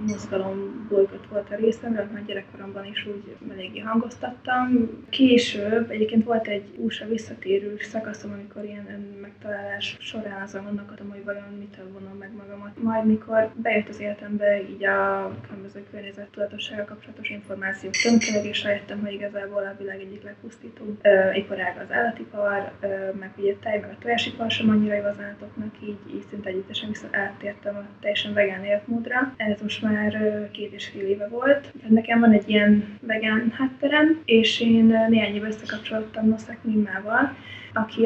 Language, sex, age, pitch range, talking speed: Hungarian, female, 20-39, 200-225 Hz, 150 wpm